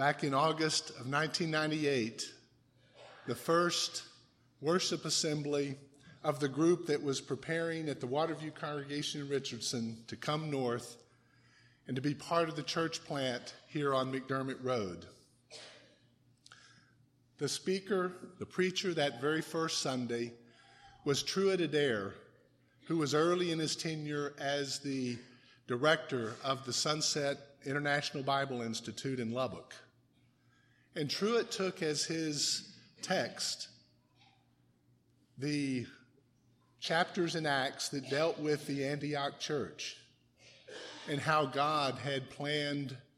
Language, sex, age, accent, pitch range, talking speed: English, male, 50-69, American, 130-155 Hz, 120 wpm